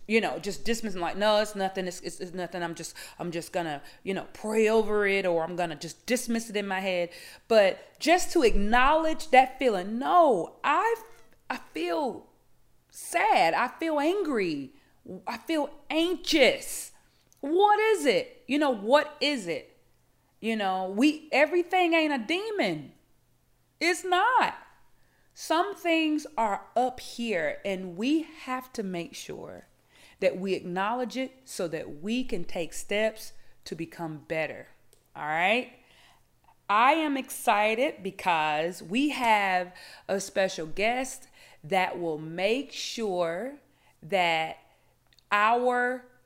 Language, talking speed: English, 140 wpm